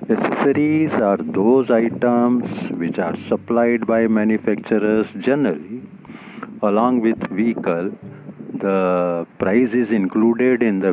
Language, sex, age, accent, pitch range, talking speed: Hindi, male, 50-69, native, 100-125 Hz, 105 wpm